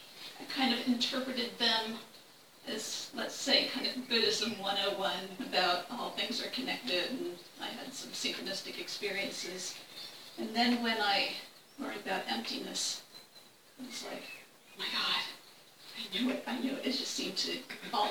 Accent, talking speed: American, 150 wpm